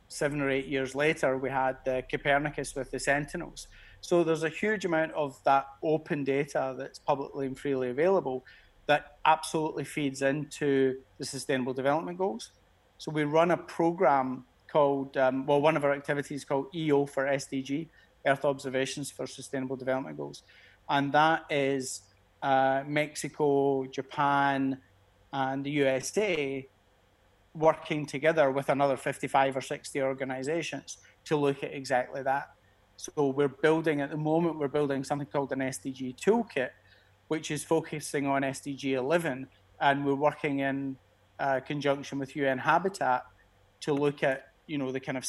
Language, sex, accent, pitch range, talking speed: English, male, British, 130-150 Hz, 150 wpm